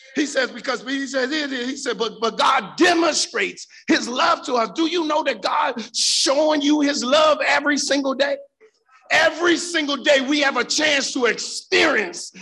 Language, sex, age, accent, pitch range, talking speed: English, male, 50-69, American, 220-300 Hz, 175 wpm